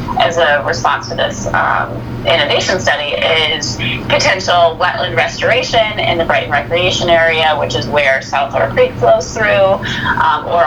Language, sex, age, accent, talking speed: English, female, 20-39, American, 150 wpm